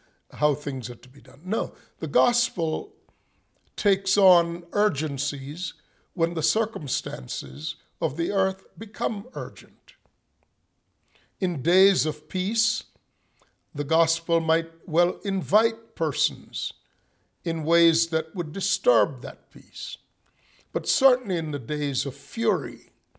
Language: English